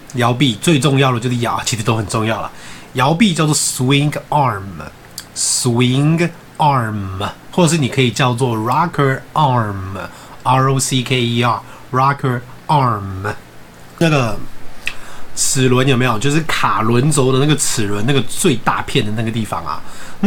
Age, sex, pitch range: 30-49, male, 115-150 Hz